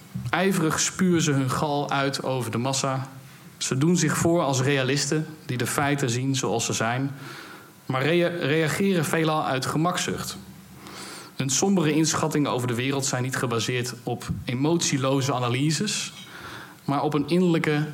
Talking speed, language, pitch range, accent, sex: 145 wpm, Dutch, 125-155 Hz, Dutch, male